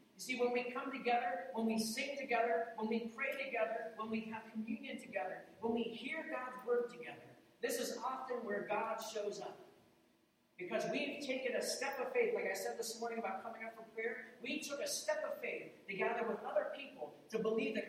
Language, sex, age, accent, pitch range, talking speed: English, male, 40-59, American, 190-255 Hz, 210 wpm